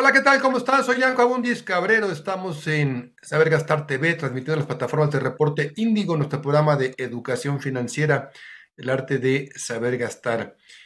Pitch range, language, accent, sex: 125-175 Hz, Spanish, Mexican, male